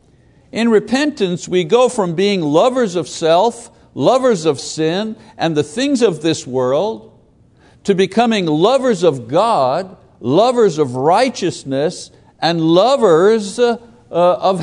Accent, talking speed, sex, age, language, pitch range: American, 120 wpm, male, 60-79, English, 150-230 Hz